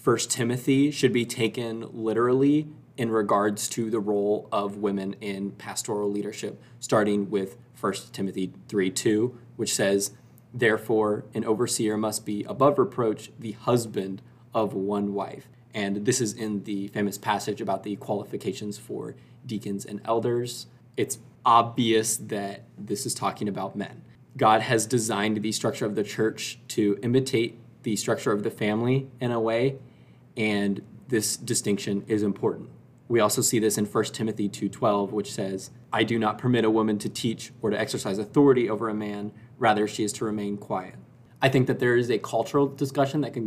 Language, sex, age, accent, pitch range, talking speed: English, male, 20-39, American, 105-125 Hz, 170 wpm